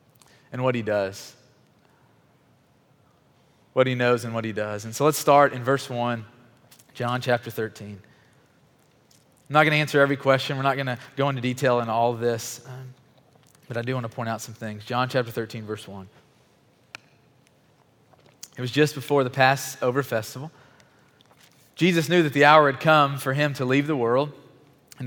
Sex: male